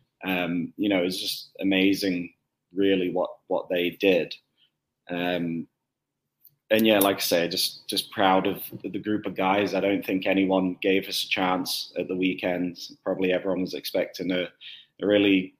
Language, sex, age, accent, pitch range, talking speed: English, male, 20-39, British, 90-100 Hz, 165 wpm